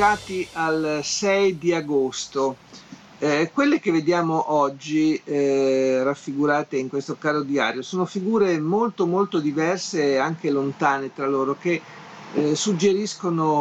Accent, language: native, Italian